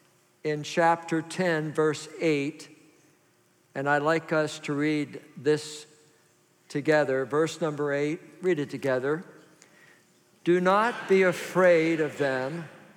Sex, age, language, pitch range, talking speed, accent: male, 50-69, English, 150-195 Hz, 115 wpm, American